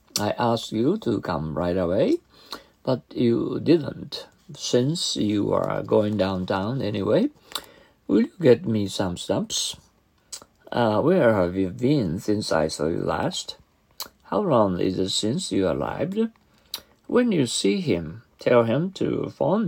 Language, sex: Japanese, male